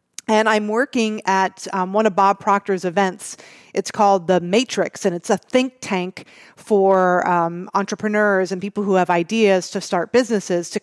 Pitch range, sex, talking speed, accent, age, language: 190-240 Hz, female, 170 wpm, American, 40-59, English